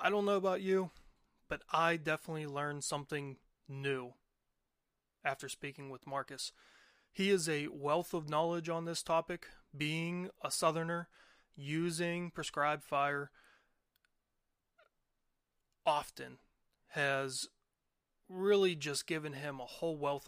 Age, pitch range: 30-49, 140-175 Hz